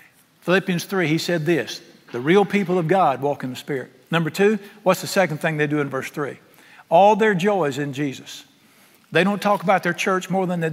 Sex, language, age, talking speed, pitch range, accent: male, English, 60-79, 225 wpm, 155-210 Hz, American